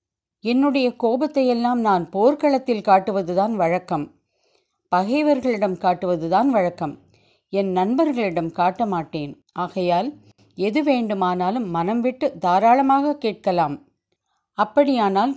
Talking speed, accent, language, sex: 80 wpm, native, Tamil, female